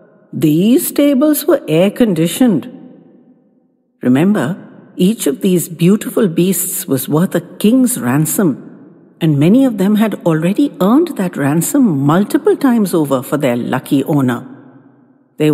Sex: female